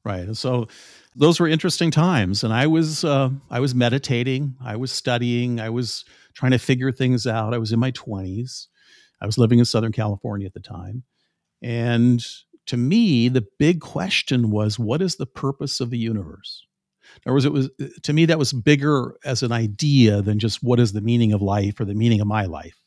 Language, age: English, 50-69